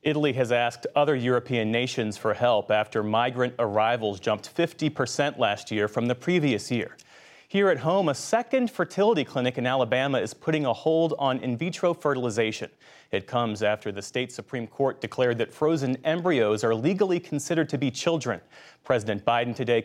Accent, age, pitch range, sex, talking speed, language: American, 30-49, 120-155 Hz, male, 170 wpm, English